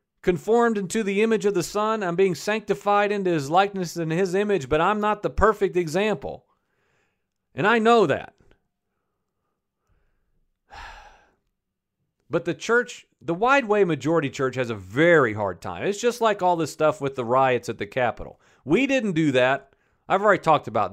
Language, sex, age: English, male, 40-59